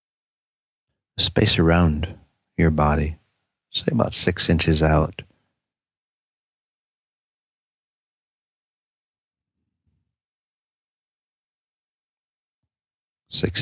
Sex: male